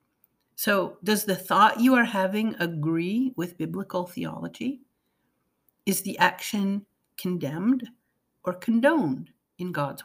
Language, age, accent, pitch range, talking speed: English, 50-69, American, 175-250 Hz, 115 wpm